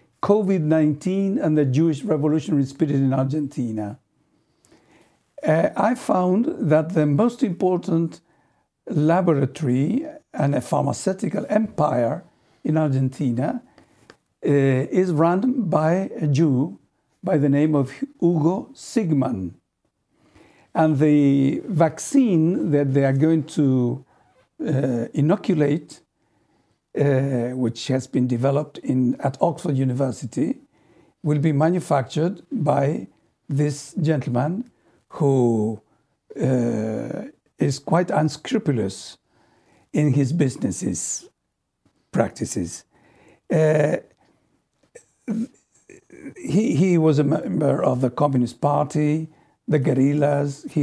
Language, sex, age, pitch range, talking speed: English, male, 60-79, 135-170 Hz, 95 wpm